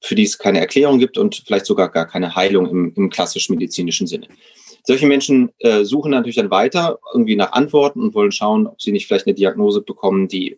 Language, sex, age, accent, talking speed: German, male, 30-49, German, 210 wpm